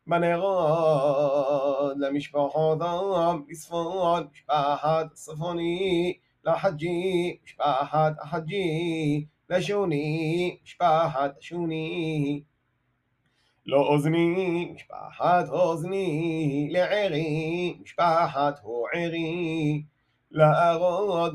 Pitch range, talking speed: 150-170 Hz, 55 wpm